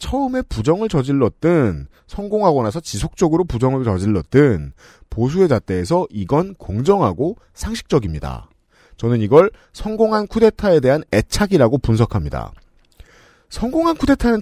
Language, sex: Korean, male